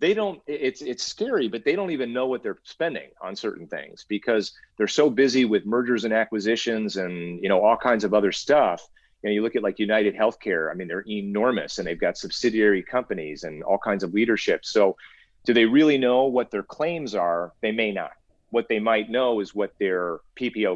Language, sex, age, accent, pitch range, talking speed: English, male, 40-59, American, 95-120 Hz, 215 wpm